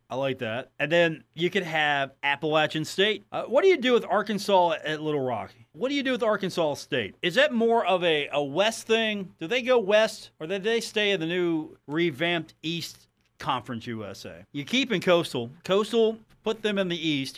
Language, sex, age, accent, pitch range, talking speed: English, male, 40-59, American, 130-190 Hz, 205 wpm